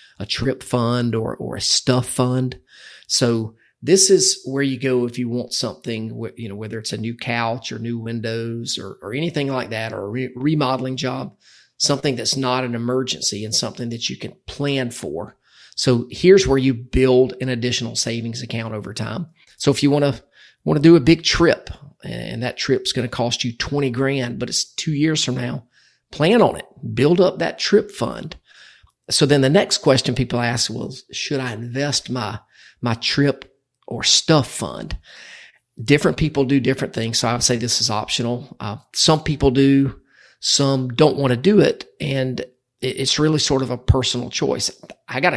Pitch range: 120-140 Hz